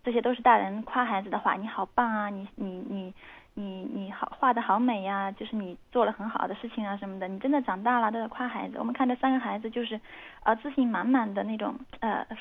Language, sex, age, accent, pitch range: Chinese, female, 10-29, native, 210-250 Hz